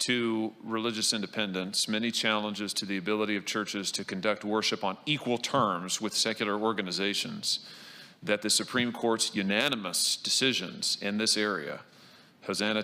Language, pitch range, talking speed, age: English, 95-110 Hz, 135 wpm, 40-59